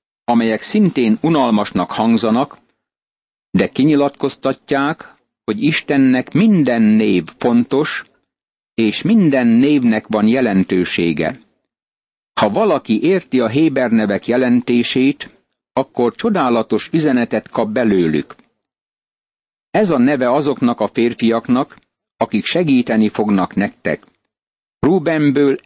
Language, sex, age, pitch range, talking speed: Hungarian, male, 60-79, 110-145 Hz, 90 wpm